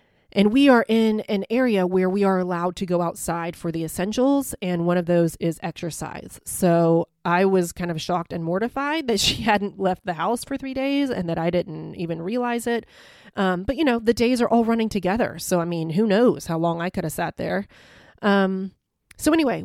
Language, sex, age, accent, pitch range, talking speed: English, female, 30-49, American, 170-210 Hz, 215 wpm